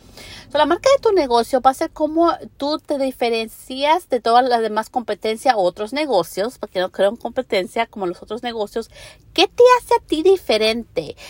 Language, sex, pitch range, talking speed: English, female, 195-260 Hz, 185 wpm